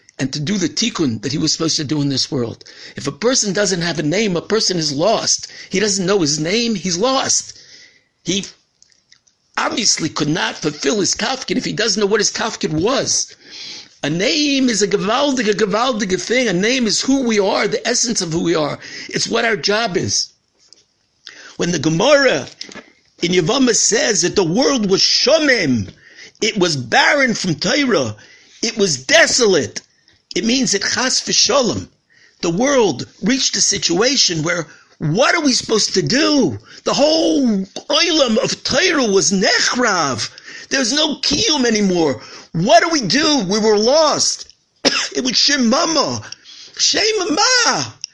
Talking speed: 160 wpm